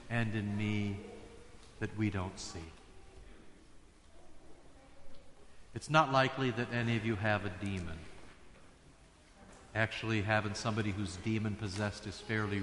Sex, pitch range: male, 105-130 Hz